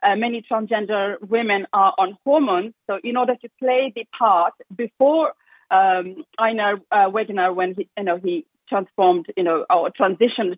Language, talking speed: English, 165 wpm